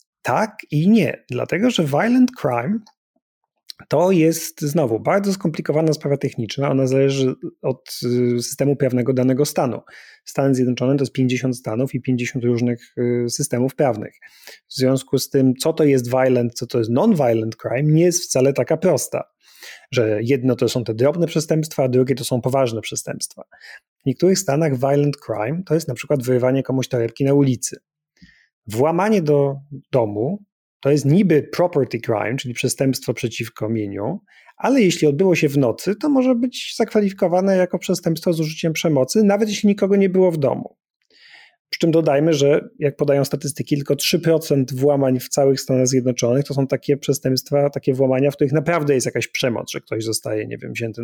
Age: 30-49